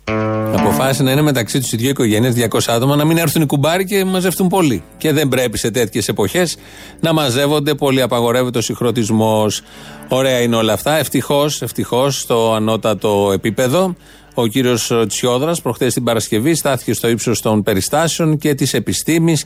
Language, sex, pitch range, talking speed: Greek, male, 110-135 Hz, 165 wpm